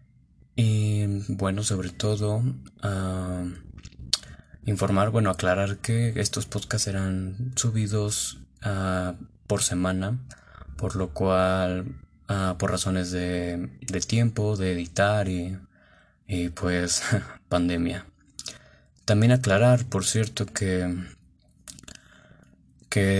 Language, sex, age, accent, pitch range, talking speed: Spanish, male, 20-39, Mexican, 90-105 Hz, 95 wpm